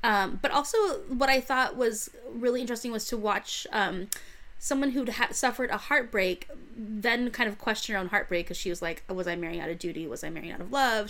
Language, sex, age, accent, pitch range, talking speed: English, female, 20-39, American, 180-240 Hz, 225 wpm